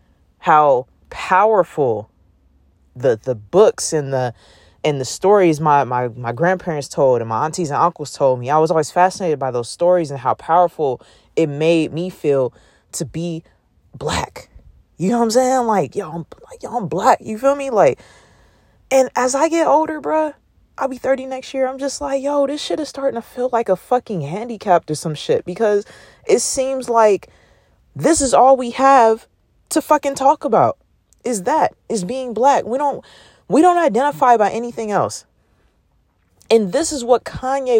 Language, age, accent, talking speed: English, 20-39, American, 180 wpm